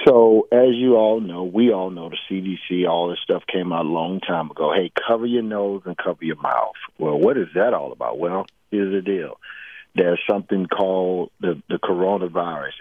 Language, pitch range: English, 90-115 Hz